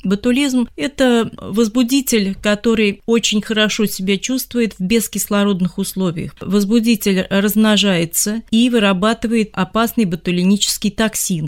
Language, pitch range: Russian, 180-225 Hz